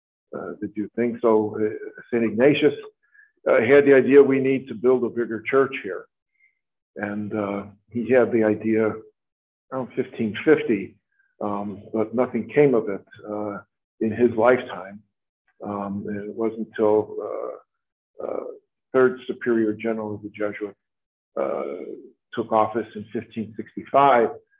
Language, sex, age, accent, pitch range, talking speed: English, male, 50-69, American, 105-130 Hz, 135 wpm